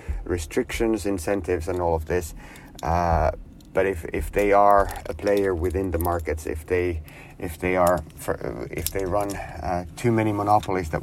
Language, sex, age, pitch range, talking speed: English, male, 30-49, 85-100 Hz, 170 wpm